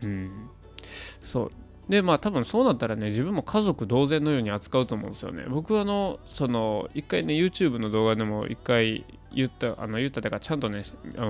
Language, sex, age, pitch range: Japanese, male, 20-39, 105-130 Hz